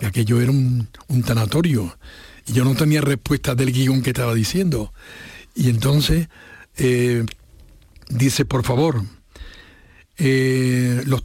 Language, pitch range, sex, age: Spanish, 120-140 Hz, male, 60-79